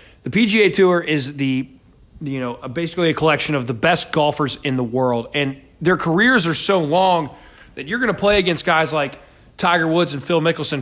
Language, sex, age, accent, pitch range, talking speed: English, male, 30-49, American, 125-165 Hz, 200 wpm